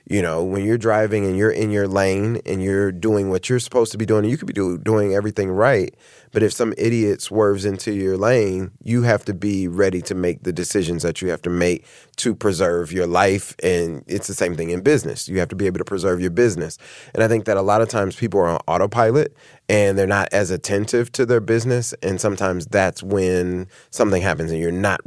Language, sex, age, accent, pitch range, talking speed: English, male, 30-49, American, 90-105 Hz, 230 wpm